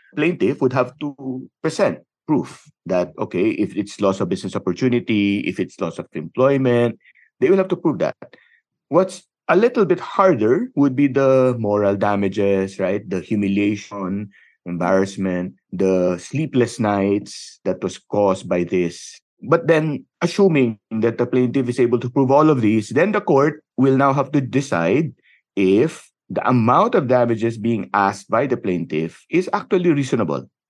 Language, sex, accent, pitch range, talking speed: Filipino, male, native, 105-155 Hz, 160 wpm